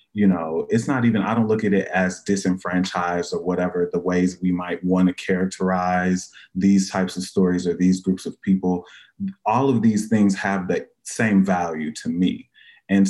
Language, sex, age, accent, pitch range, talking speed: English, male, 30-49, American, 85-95 Hz, 190 wpm